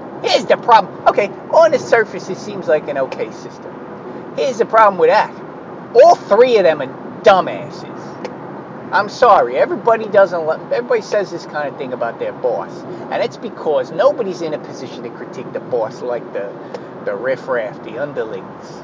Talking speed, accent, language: 175 wpm, American, English